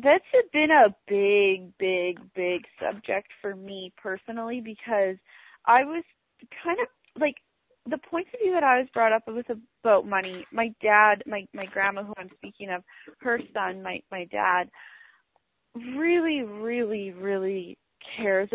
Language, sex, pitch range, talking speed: English, female, 195-260 Hz, 150 wpm